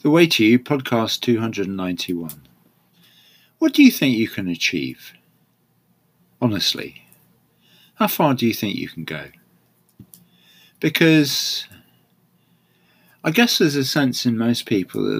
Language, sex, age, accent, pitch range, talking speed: English, male, 50-69, British, 85-125 Hz, 125 wpm